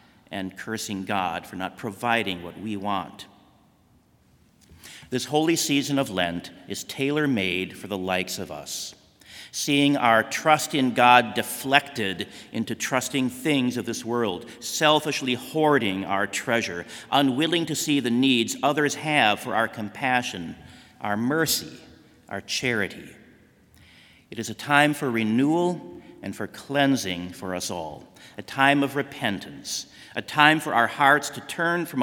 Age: 50-69